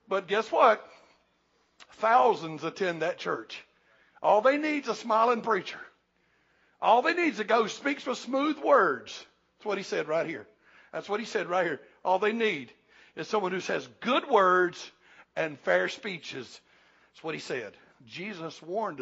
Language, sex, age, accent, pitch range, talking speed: English, male, 60-79, American, 160-215 Hz, 175 wpm